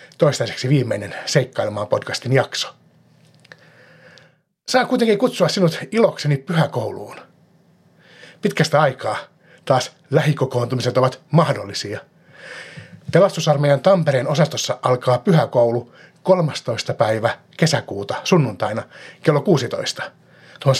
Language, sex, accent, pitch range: Finnish, male, native, 120-170 Hz